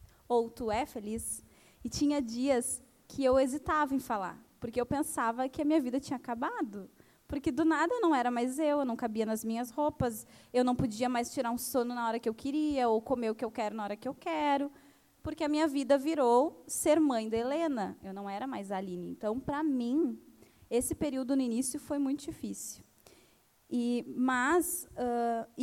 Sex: female